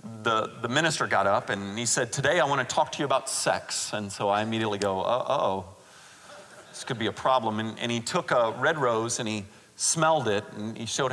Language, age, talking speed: English, 40-59, 235 wpm